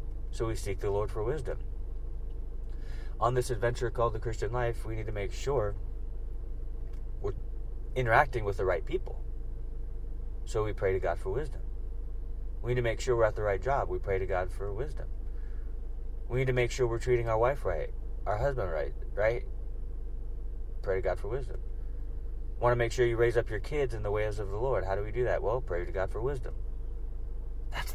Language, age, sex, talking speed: English, 30-49, male, 200 wpm